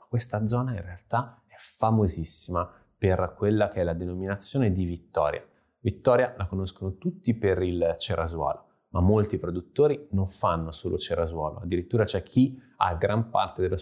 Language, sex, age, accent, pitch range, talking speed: Italian, male, 20-39, native, 90-115 Hz, 150 wpm